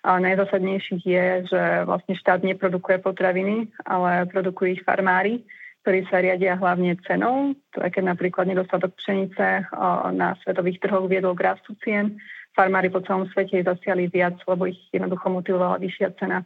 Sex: female